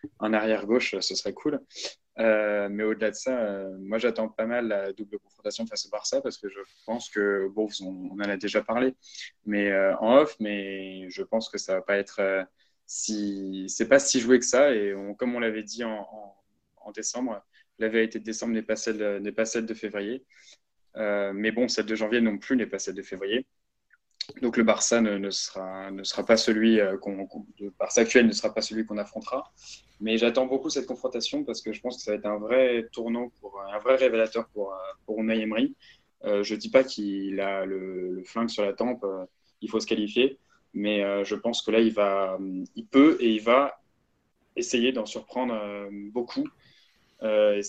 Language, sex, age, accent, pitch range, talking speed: French, male, 20-39, French, 100-115 Hz, 205 wpm